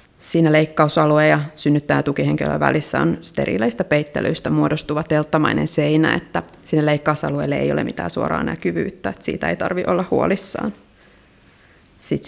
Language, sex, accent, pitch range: Finnish, female, native, 150-190 Hz